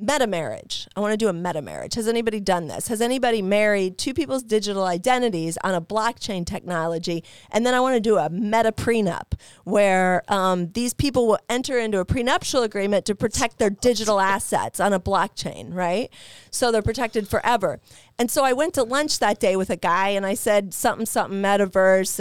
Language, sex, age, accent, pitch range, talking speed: English, female, 40-59, American, 190-250 Hz, 195 wpm